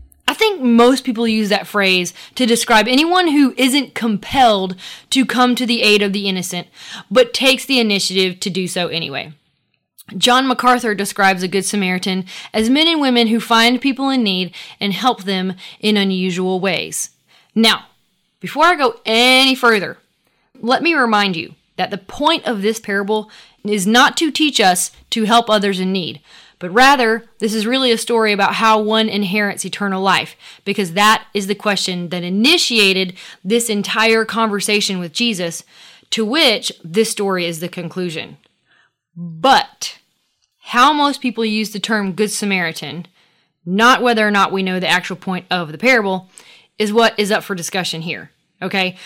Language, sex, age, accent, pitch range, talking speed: English, female, 20-39, American, 185-240 Hz, 170 wpm